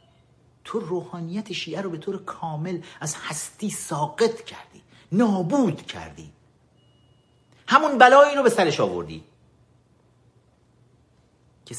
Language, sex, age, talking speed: Persian, male, 50-69, 100 wpm